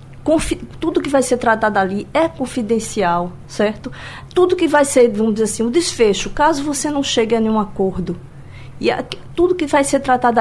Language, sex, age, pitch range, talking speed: Portuguese, female, 50-69, 215-310 Hz, 190 wpm